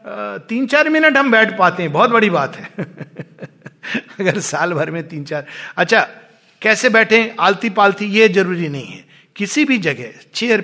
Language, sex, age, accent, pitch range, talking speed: Hindi, male, 50-69, native, 160-220 Hz, 170 wpm